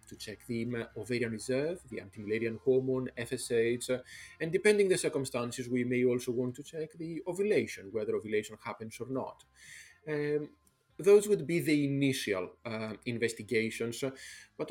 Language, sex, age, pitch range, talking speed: English, male, 40-59, 110-140 Hz, 145 wpm